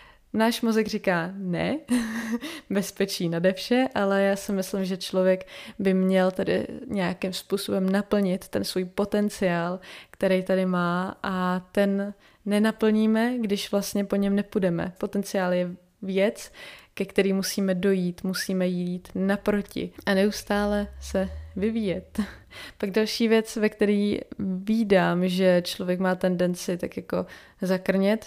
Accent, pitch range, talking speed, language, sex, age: native, 190-215 Hz, 125 wpm, Czech, female, 20-39